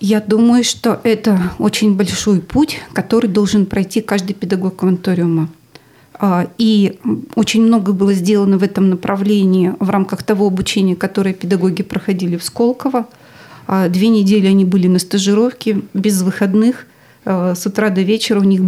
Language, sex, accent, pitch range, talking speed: Russian, female, native, 190-215 Hz, 140 wpm